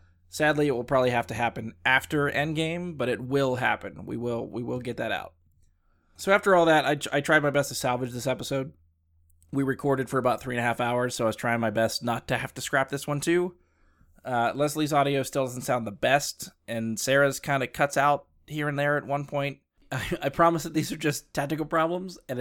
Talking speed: 230 wpm